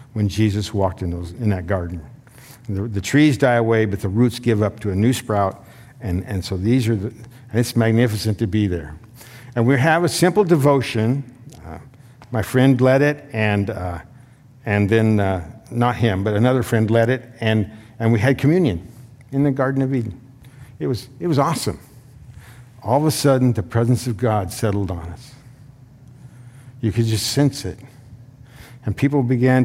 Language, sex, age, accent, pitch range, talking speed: English, male, 50-69, American, 115-135 Hz, 185 wpm